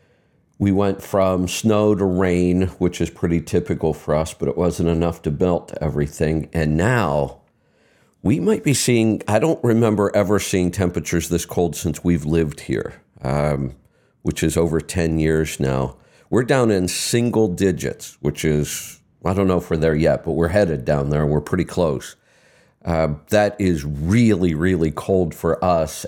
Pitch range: 80-95 Hz